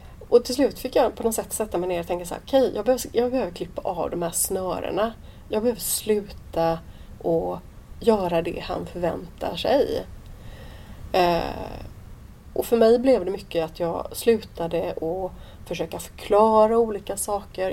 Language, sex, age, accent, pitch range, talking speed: Swedish, female, 30-49, native, 170-225 Hz, 165 wpm